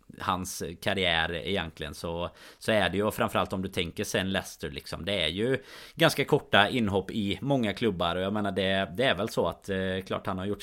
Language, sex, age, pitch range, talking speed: Swedish, male, 20-39, 90-110 Hz, 210 wpm